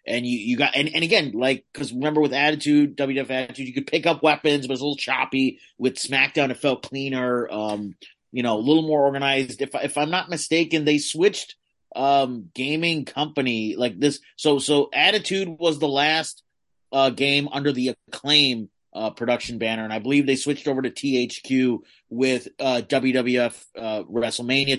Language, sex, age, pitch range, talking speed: English, male, 30-49, 115-140 Hz, 185 wpm